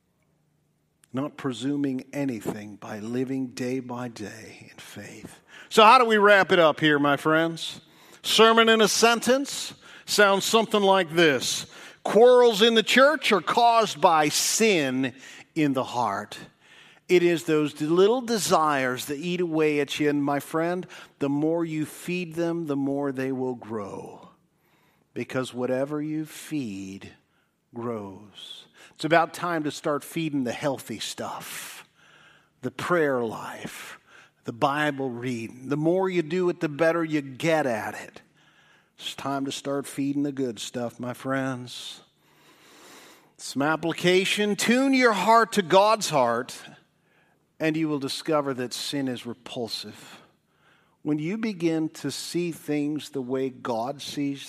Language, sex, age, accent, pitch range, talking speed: English, male, 50-69, American, 135-175 Hz, 145 wpm